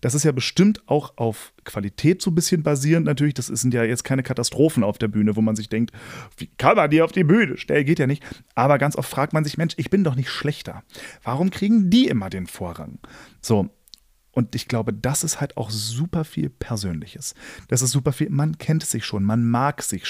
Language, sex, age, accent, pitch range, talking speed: German, male, 30-49, German, 115-155 Hz, 225 wpm